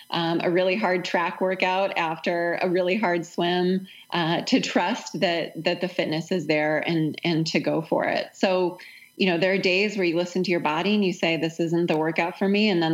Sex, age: female, 20-39